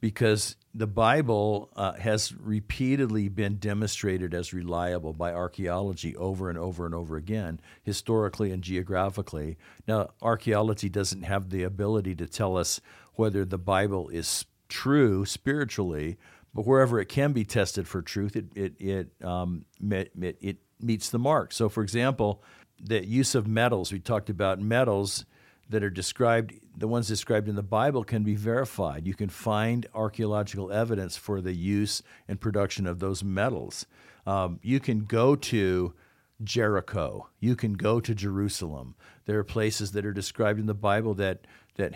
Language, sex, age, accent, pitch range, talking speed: English, male, 50-69, American, 95-110 Hz, 160 wpm